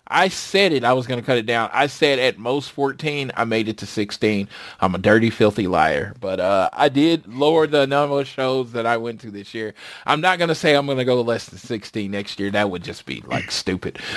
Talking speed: 255 wpm